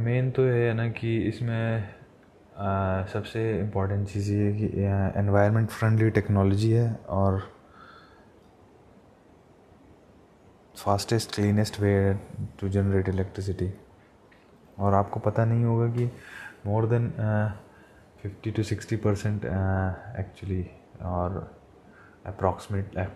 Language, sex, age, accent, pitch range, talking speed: Hindi, male, 20-39, native, 95-105 Hz, 105 wpm